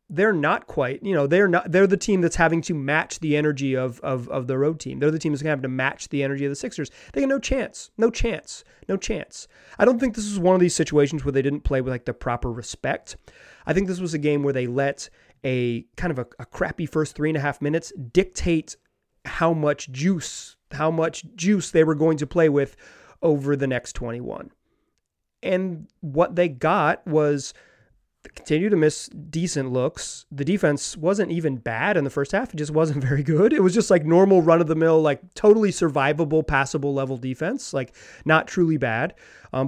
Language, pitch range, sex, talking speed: English, 140-185 Hz, male, 210 wpm